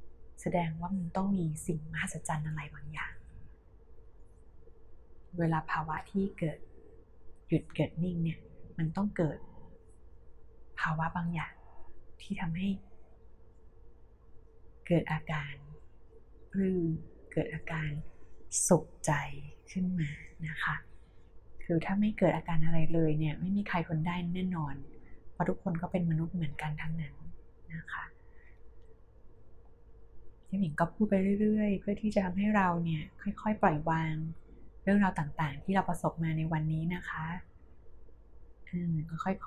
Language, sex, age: Thai, female, 20-39